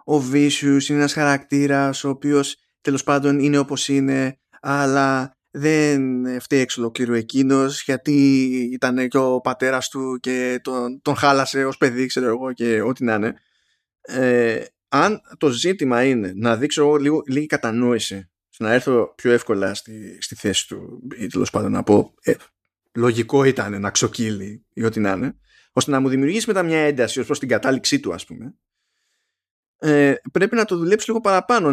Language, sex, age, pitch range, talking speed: Greek, male, 20-39, 120-150 Hz, 165 wpm